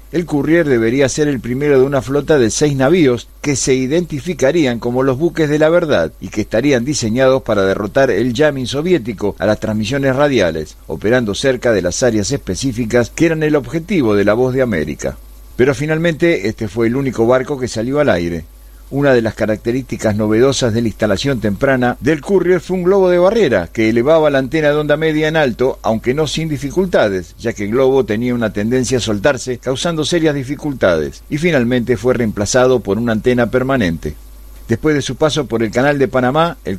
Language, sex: Spanish, male